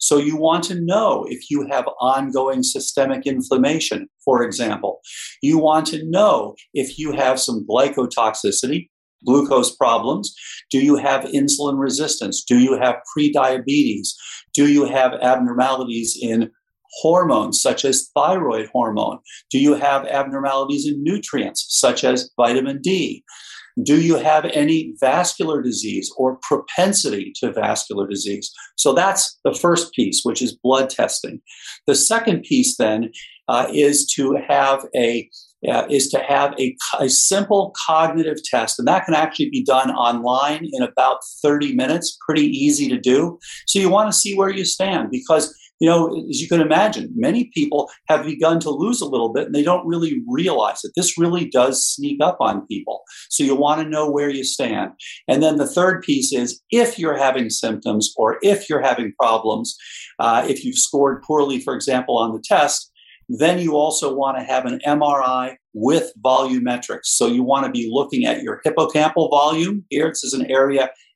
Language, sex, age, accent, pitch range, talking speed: English, male, 50-69, American, 130-170 Hz, 170 wpm